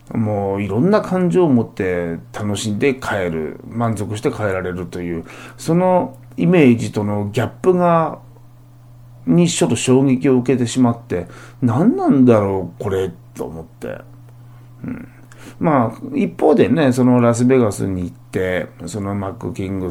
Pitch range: 100-130 Hz